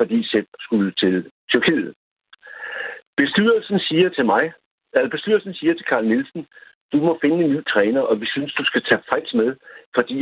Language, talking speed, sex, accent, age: Danish, 180 wpm, male, native, 60-79